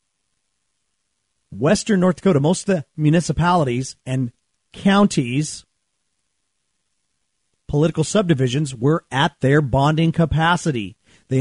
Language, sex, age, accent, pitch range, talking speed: English, male, 40-59, American, 135-190 Hz, 90 wpm